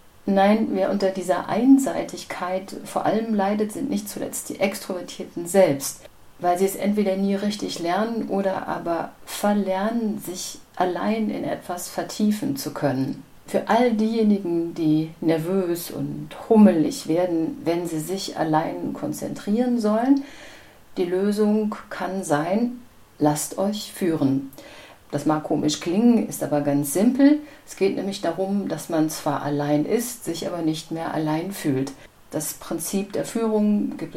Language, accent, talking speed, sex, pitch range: German, German, 140 wpm, female, 155-215 Hz